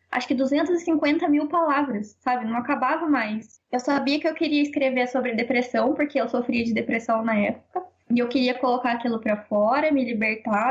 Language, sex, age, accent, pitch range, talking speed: Portuguese, female, 10-29, Brazilian, 245-295 Hz, 185 wpm